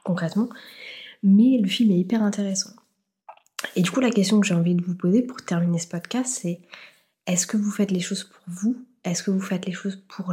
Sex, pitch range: female, 180-205 Hz